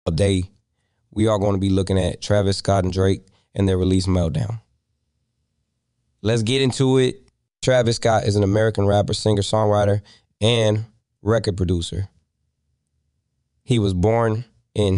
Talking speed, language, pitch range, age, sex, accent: 140 wpm, English, 95-115 Hz, 20-39, male, American